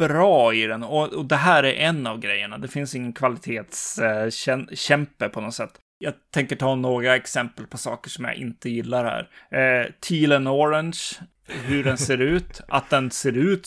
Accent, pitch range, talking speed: native, 125-150 Hz, 195 wpm